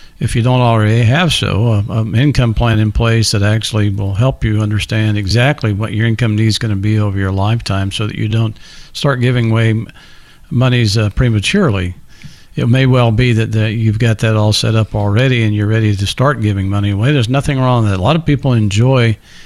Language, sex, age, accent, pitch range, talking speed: English, male, 50-69, American, 105-125 Hz, 210 wpm